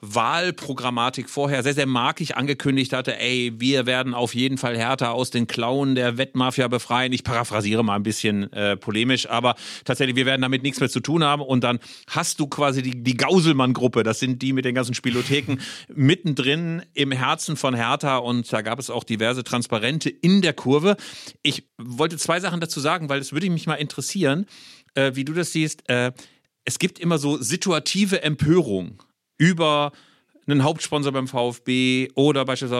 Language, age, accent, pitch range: German, 40-59, German, 125-155 Hz